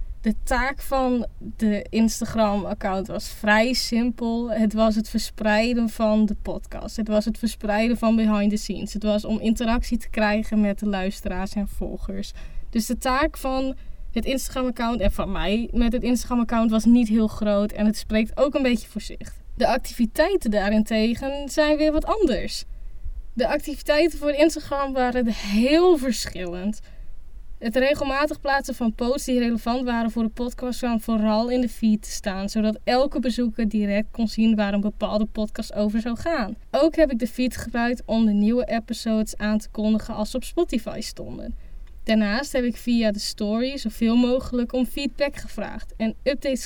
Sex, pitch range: female, 215-255 Hz